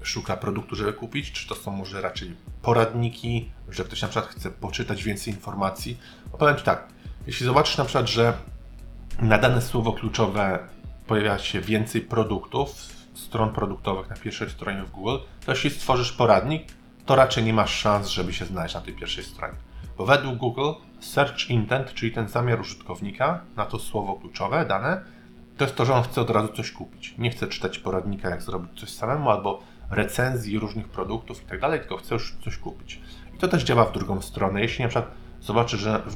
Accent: native